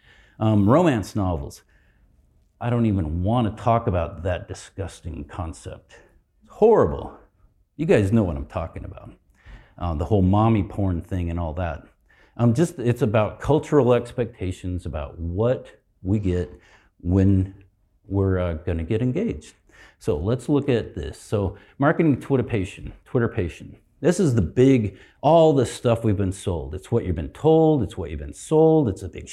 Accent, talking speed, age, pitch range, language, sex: American, 165 wpm, 50-69, 90-125 Hz, English, male